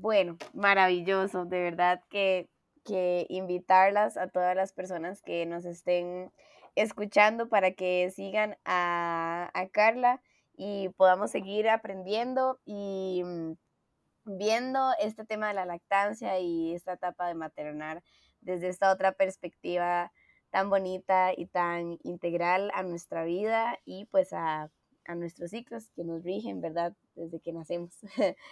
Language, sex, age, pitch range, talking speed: Spanish, female, 20-39, 175-210 Hz, 130 wpm